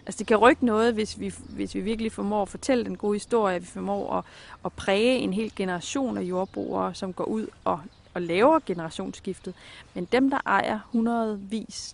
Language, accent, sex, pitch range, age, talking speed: Danish, native, female, 185-225 Hz, 30-49, 195 wpm